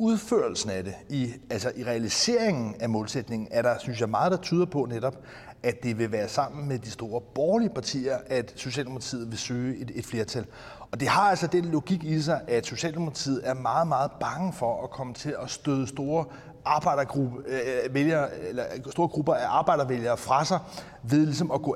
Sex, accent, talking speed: male, native, 180 wpm